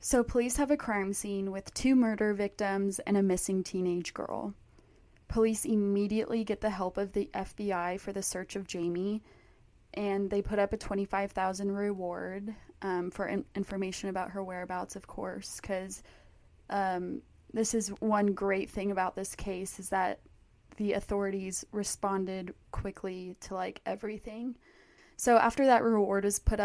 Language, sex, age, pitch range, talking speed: English, female, 20-39, 190-210 Hz, 150 wpm